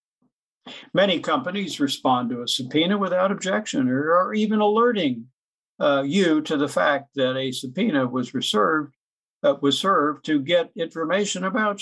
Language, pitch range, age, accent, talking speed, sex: English, 130-200 Hz, 60-79, American, 145 wpm, male